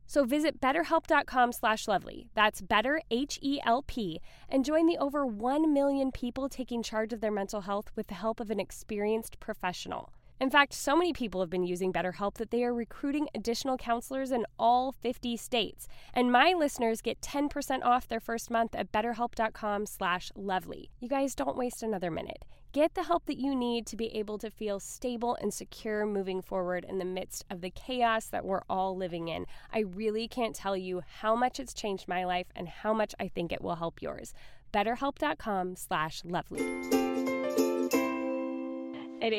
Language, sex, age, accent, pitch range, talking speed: English, female, 20-39, American, 190-250 Hz, 170 wpm